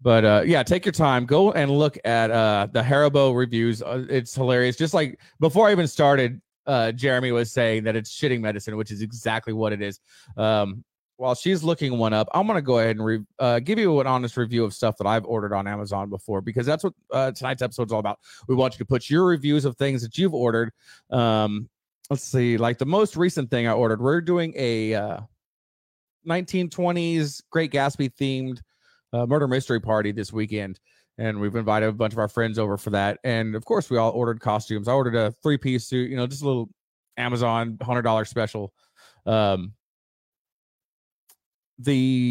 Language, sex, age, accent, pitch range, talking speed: English, male, 30-49, American, 110-140 Hz, 200 wpm